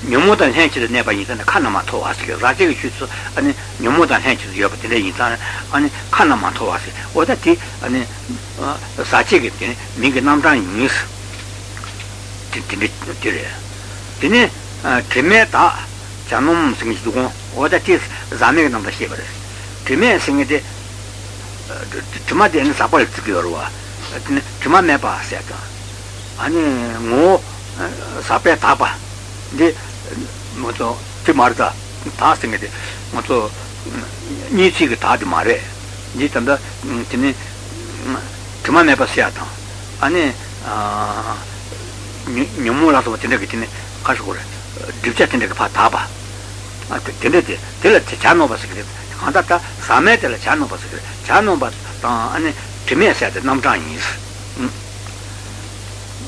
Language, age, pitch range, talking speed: Italian, 60-79, 100-110 Hz, 45 wpm